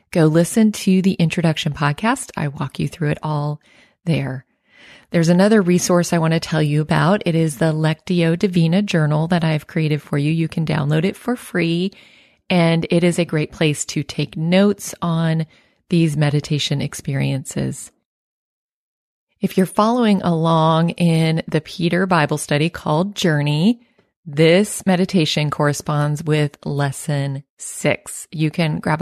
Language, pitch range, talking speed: English, 150-175 Hz, 150 wpm